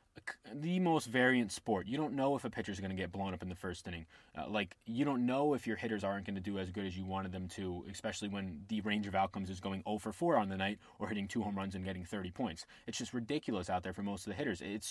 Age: 20-39